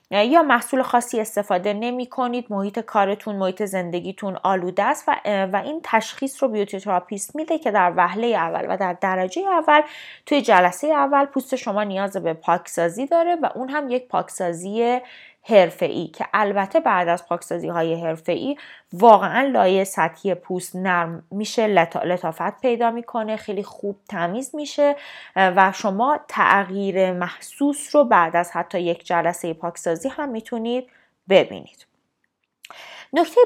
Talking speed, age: 140 wpm, 20-39